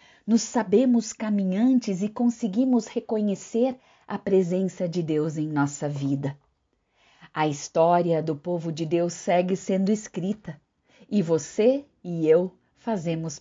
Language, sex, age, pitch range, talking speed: Portuguese, female, 50-69, 150-210 Hz, 120 wpm